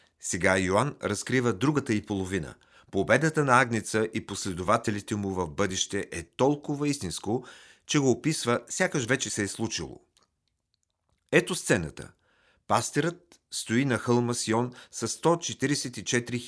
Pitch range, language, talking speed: 100-130 Hz, Bulgarian, 125 wpm